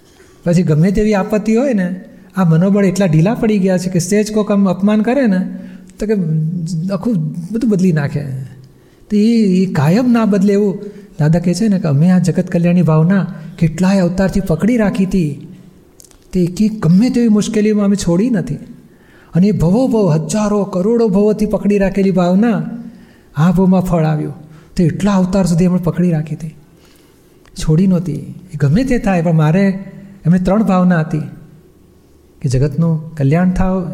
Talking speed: 165 wpm